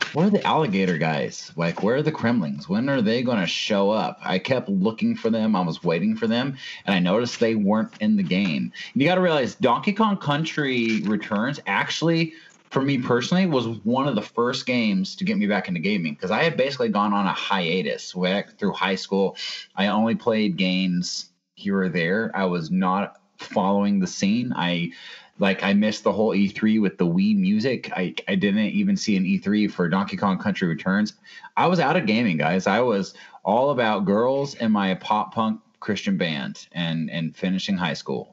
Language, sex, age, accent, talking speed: English, male, 30-49, American, 200 wpm